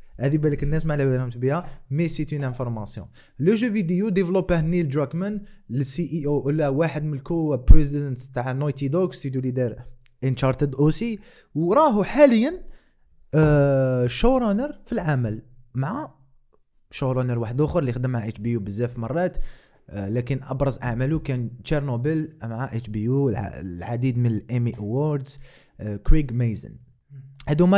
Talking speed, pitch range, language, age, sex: 140 wpm, 130-170 Hz, Arabic, 20-39, male